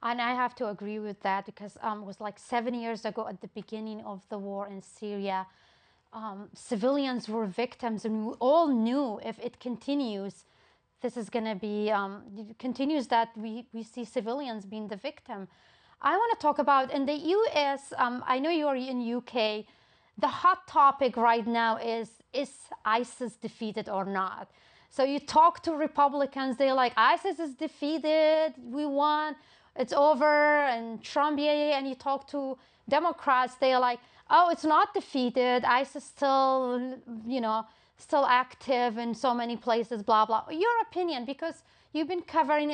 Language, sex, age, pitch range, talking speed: English, female, 30-49, 225-280 Hz, 165 wpm